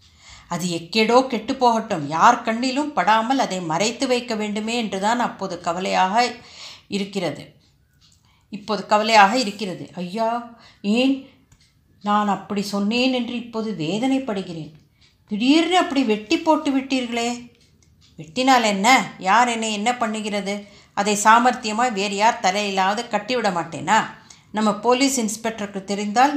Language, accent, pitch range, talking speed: Tamil, native, 185-235 Hz, 105 wpm